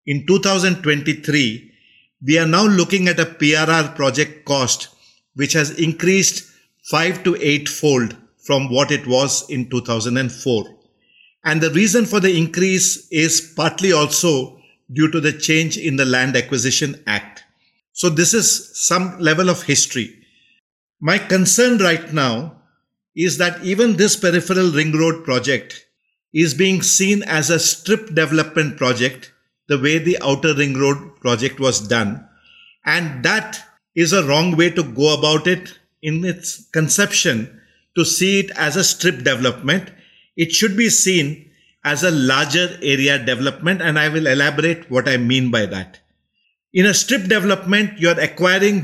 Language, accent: English, Indian